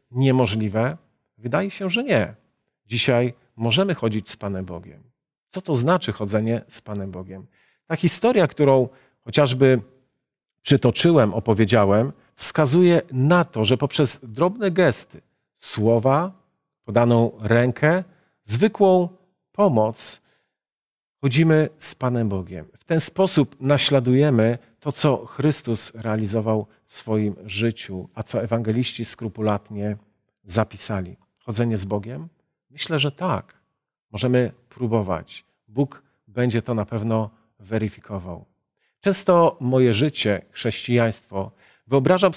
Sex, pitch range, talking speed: male, 110-150 Hz, 105 wpm